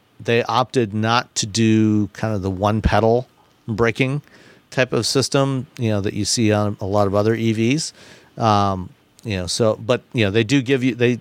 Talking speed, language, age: 200 wpm, English, 50-69